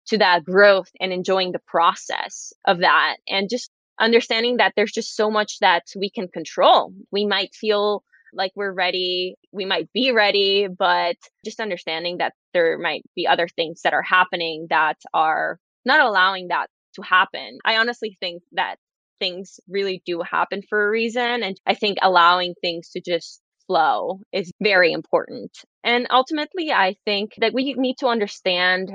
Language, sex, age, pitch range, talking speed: English, female, 20-39, 175-220 Hz, 170 wpm